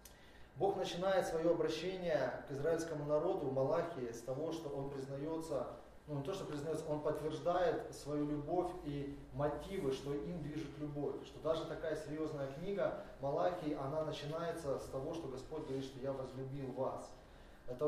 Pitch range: 130-155 Hz